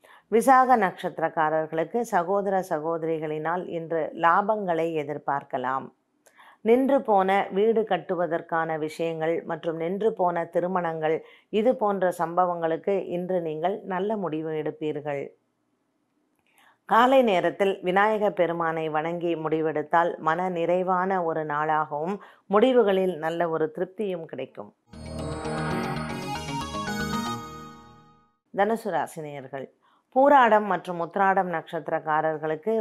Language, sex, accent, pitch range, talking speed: Tamil, female, native, 155-195 Hz, 80 wpm